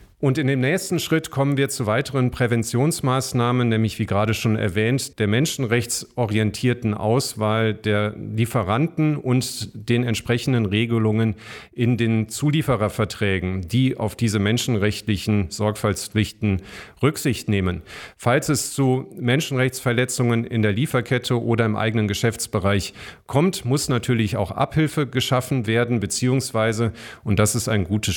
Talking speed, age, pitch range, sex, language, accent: 125 wpm, 40-59, 105-130 Hz, male, German, German